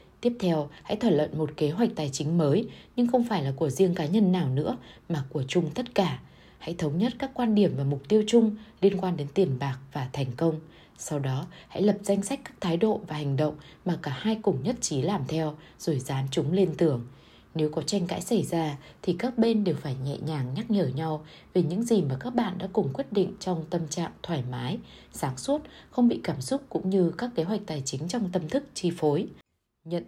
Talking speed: 235 wpm